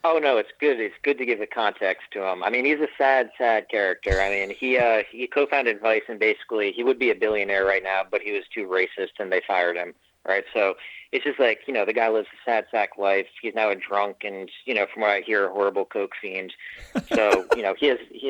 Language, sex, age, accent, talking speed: English, male, 40-59, American, 260 wpm